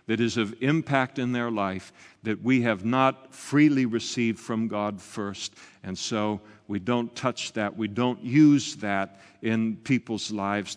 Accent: American